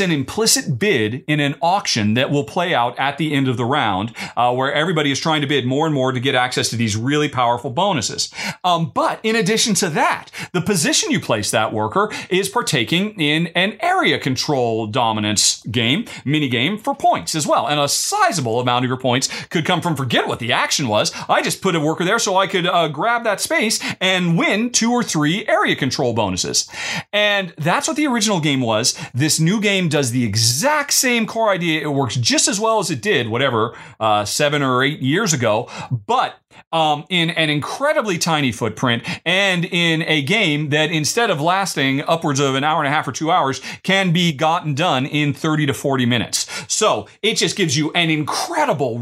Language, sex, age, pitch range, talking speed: English, male, 40-59, 140-195 Hz, 205 wpm